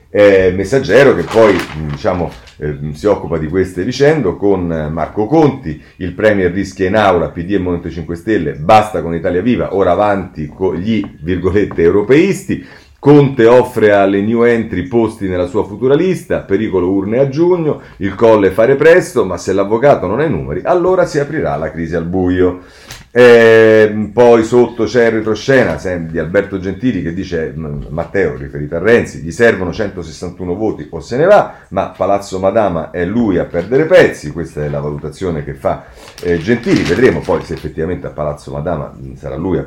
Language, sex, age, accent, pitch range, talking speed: Italian, male, 40-59, native, 85-125 Hz, 175 wpm